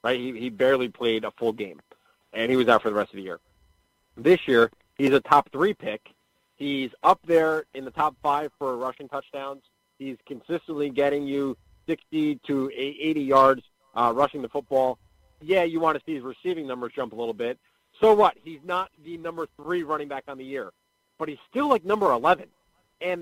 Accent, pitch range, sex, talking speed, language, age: American, 135-195 Hz, male, 200 wpm, English, 40-59